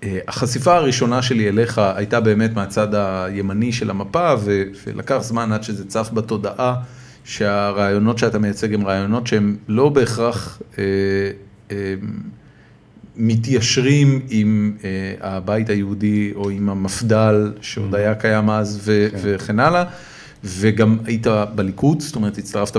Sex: male